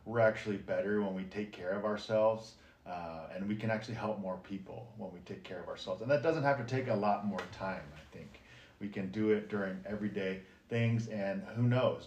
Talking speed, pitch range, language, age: 225 wpm, 100-115 Hz, English, 40-59